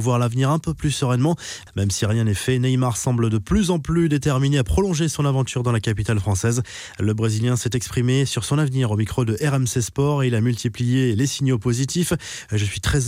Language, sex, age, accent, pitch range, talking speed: French, male, 20-39, French, 115-135 Hz, 225 wpm